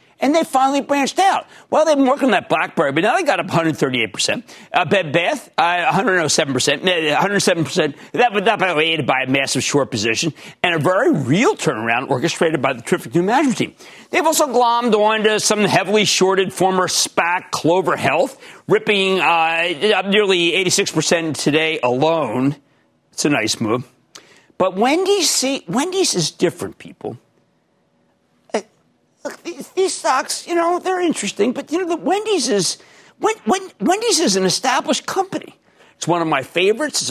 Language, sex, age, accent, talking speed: English, male, 50-69, American, 165 wpm